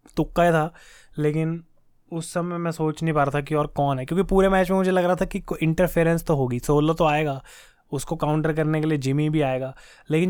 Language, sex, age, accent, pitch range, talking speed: Hindi, male, 20-39, native, 145-170 Hz, 235 wpm